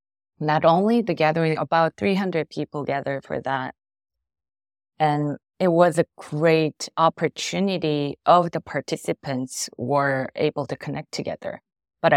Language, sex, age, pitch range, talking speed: English, female, 30-49, 135-165 Hz, 125 wpm